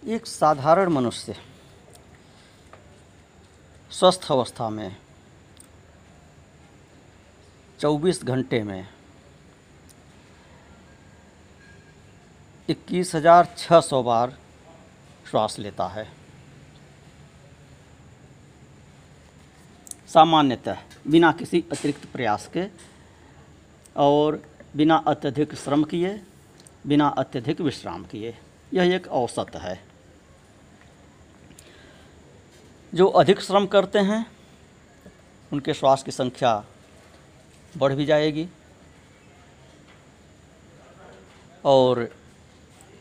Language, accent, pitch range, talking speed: Hindi, native, 95-155 Hz, 65 wpm